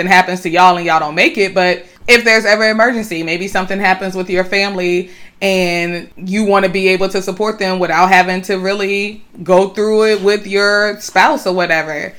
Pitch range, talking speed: 175-205 Hz, 195 wpm